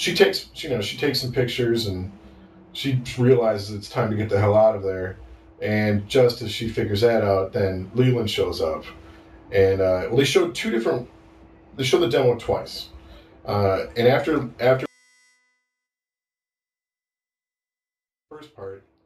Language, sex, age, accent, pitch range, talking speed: Finnish, male, 30-49, American, 95-125 Hz, 155 wpm